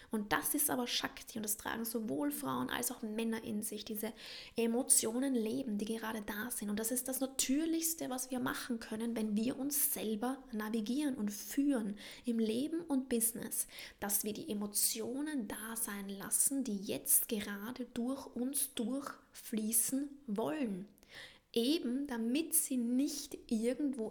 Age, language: 20-39, German